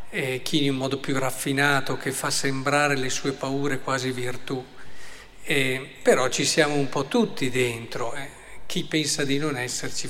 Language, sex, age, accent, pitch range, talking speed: Italian, male, 50-69, native, 130-160 Hz, 170 wpm